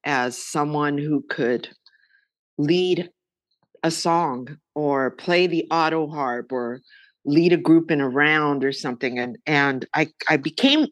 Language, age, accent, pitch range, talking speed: English, 50-69, American, 135-175 Hz, 145 wpm